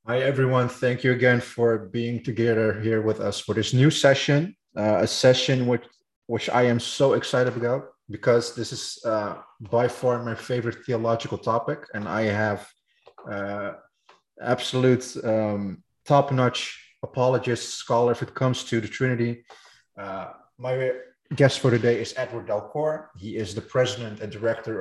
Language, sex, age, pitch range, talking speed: English, male, 20-39, 110-130 Hz, 155 wpm